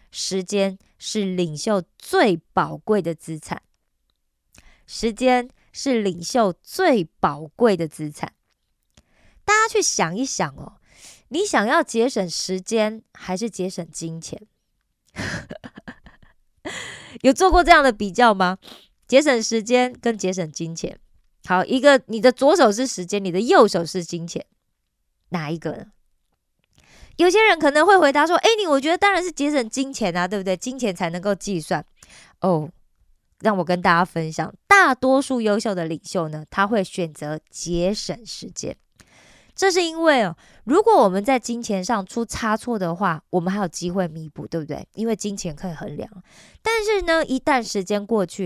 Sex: female